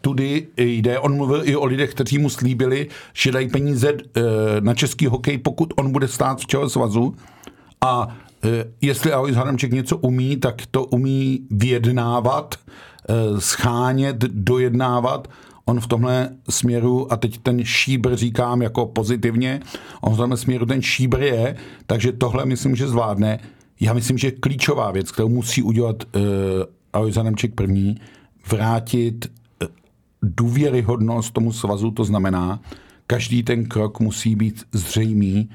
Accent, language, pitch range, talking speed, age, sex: native, Czech, 110-130 Hz, 135 wpm, 50-69, male